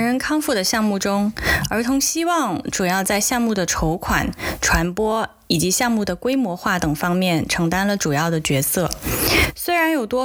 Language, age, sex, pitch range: Chinese, 20-39, female, 175-255 Hz